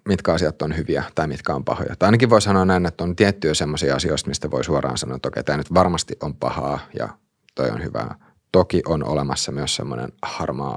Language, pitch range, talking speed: Finnish, 75-95 Hz, 225 wpm